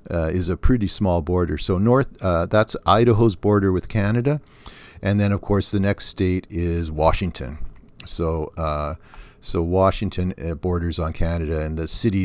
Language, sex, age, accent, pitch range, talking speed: English, male, 50-69, American, 85-110 Hz, 160 wpm